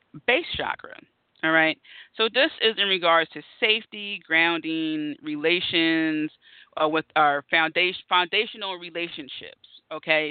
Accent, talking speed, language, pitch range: American, 115 wpm, English, 150-185 Hz